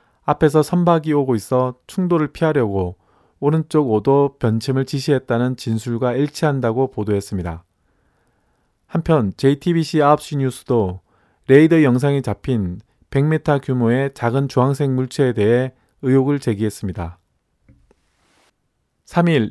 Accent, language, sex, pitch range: native, Korean, male, 115-150 Hz